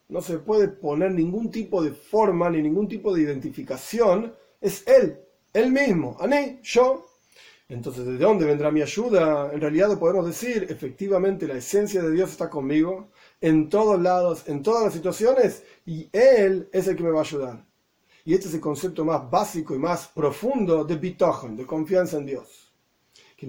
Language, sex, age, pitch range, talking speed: Spanish, male, 40-59, 155-210 Hz, 175 wpm